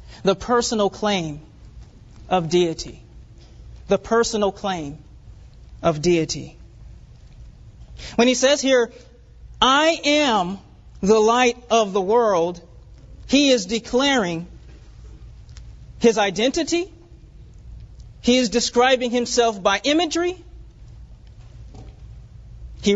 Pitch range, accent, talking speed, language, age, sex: 185-250 Hz, American, 85 wpm, English, 40-59, male